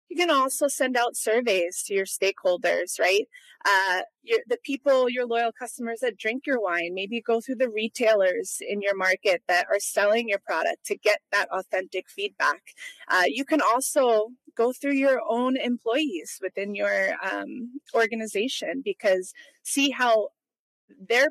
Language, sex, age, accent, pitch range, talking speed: English, female, 30-49, American, 200-280 Hz, 155 wpm